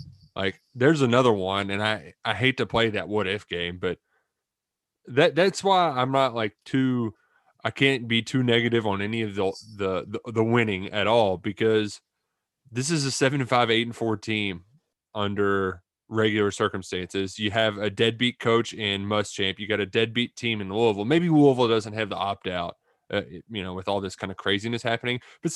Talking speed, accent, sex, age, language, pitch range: 195 wpm, American, male, 20-39, English, 105-130 Hz